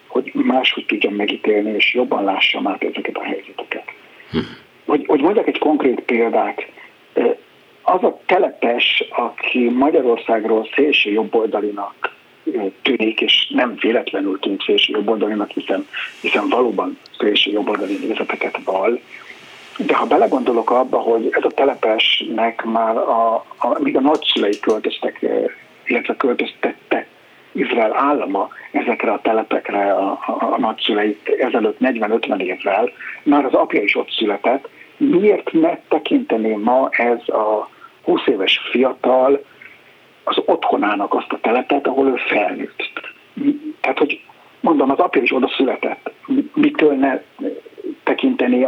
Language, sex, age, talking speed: Hungarian, male, 60-79, 130 wpm